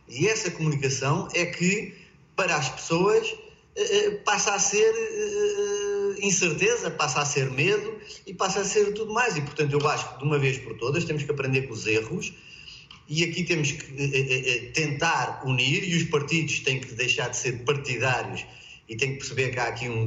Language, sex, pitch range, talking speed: Portuguese, male, 130-185 Hz, 180 wpm